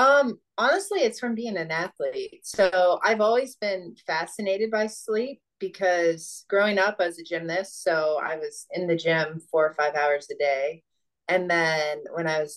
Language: English